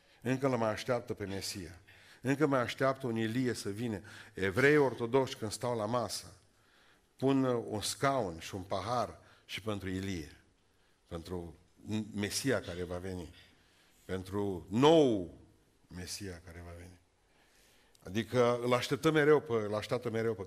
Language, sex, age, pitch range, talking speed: Romanian, male, 50-69, 95-120 Hz, 130 wpm